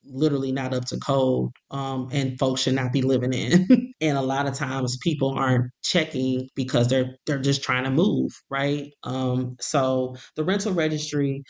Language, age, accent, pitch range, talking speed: English, 20-39, American, 125-140 Hz, 175 wpm